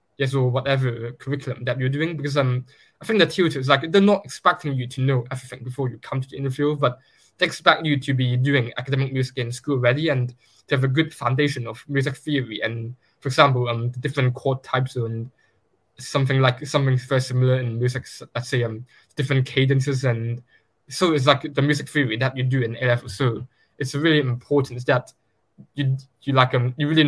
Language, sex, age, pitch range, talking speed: English, male, 10-29, 125-145 Hz, 205 wpm